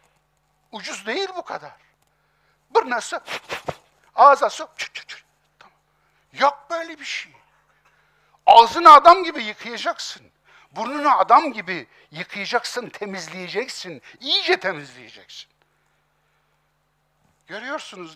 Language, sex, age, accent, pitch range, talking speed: Turkish, male, 60-79, native, 155-260 Hz, 85 wpm